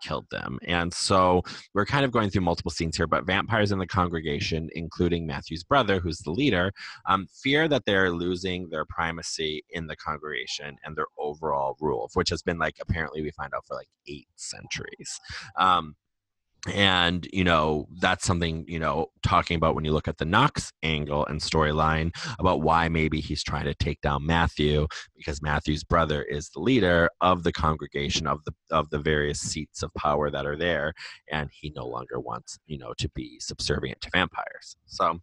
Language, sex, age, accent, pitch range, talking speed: English, male, 30-49, American, 80-95 Hz, 185 wpm